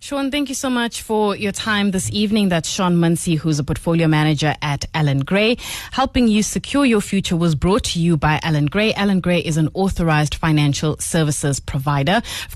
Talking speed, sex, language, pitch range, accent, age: 195 wpm, female, English, 155-195 Hz, South African, 20-39